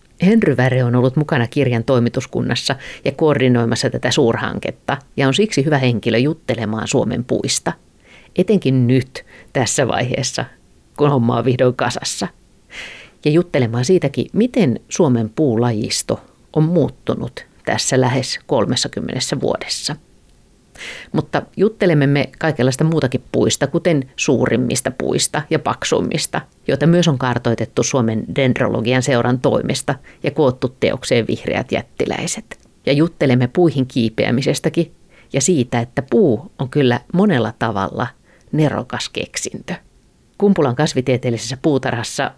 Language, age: Finnish, 50-69